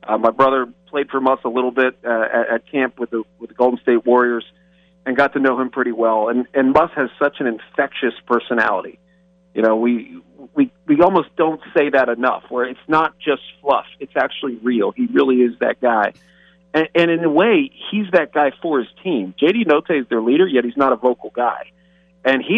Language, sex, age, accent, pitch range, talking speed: English, male, 40-59, American, 120-165 Hz, 220 wpm